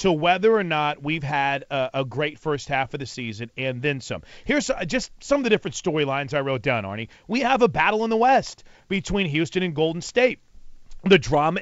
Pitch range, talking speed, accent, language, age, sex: 155-200 Hz, 220 wpm, American, English, 40-59, male